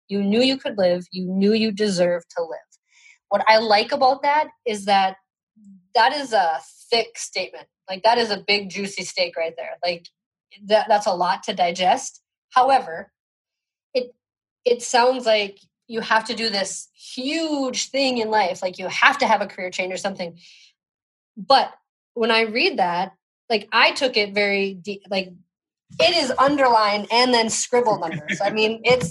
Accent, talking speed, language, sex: American, 175 wpm, English, female